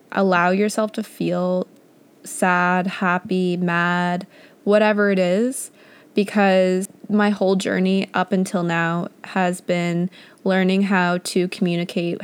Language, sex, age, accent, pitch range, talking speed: English, female, 20-39, American, 180-205 Hz, 115 wpm